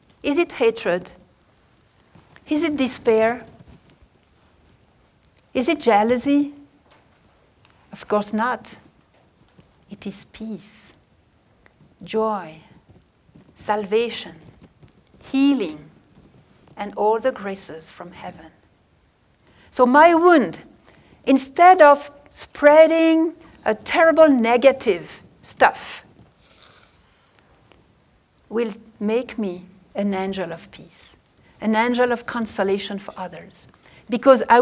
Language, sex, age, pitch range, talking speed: English, female, 60-79, 195-270 Hz, 85 wpm